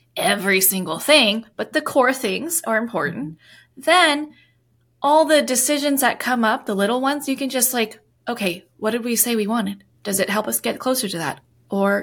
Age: 20-39